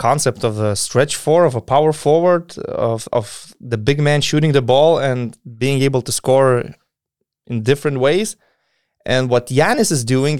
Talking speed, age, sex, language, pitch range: 175 wpm, 20-39, male, English, 110-145 Hz